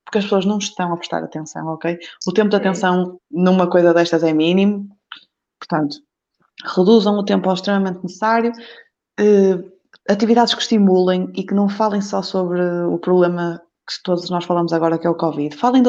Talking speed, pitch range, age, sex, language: 180 wpm, 170-220 Hz, 20-39, female, Portuguese